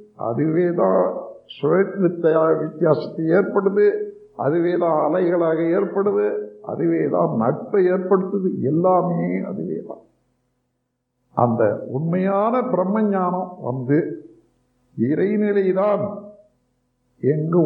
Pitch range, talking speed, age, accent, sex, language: 125-200 Hz, 80 wpm, 60-79, native, male, Tamil